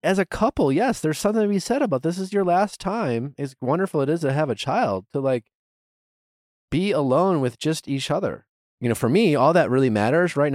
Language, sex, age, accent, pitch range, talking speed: English, male, 30-49, American, 100-145 Hz, 230 wpm